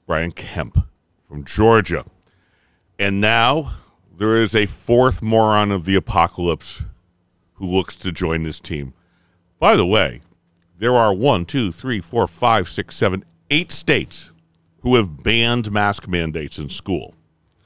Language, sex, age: English, male, 50-69